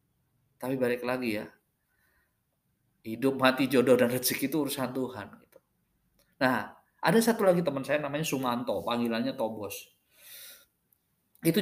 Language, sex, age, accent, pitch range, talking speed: Indonesian, male, 20-39, native, 135-210 Hz, 125 wpm